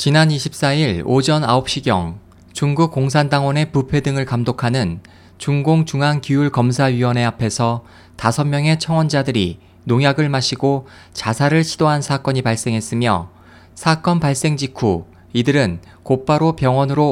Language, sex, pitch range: Korean, male, 105-155 Hz